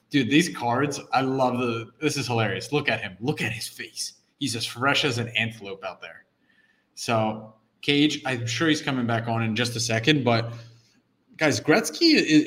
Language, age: English, 20-39